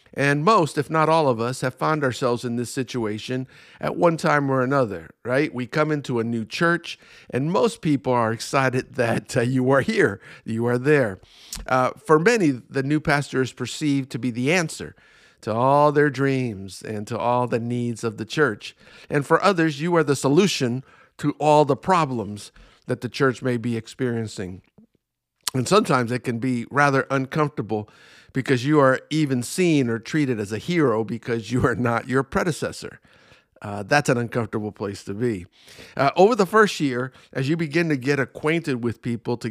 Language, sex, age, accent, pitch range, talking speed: English, male, 50-69, American, 120-155 Hz, 185 wpm